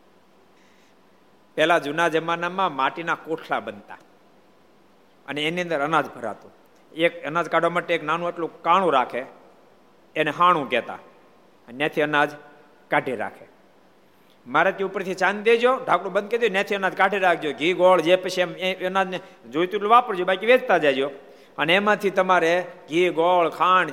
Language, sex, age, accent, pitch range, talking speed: Gujarati, male, 50-69, native, 145-180 Hz, 100 wpm